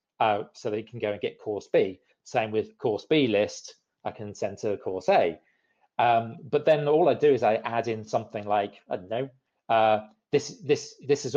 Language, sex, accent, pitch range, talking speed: English, male, British, 105-145 Hz, 210 wpm